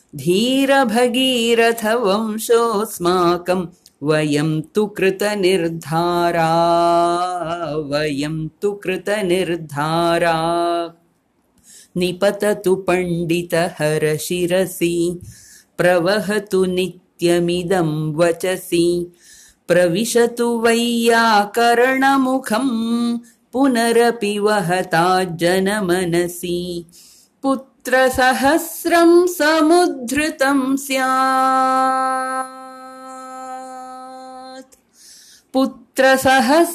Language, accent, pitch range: English, Indian, 175-260 Hz